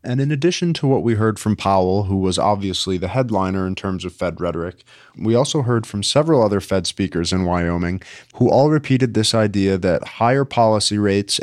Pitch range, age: 100-120 Hz, 30-49